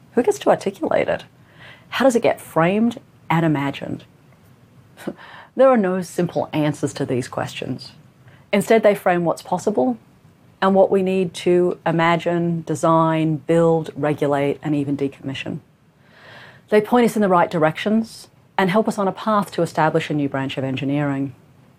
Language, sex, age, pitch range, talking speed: Arabic, female, 40-59, 145-190 Hz, 155 wpm